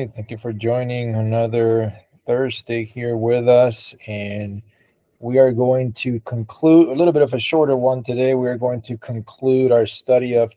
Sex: male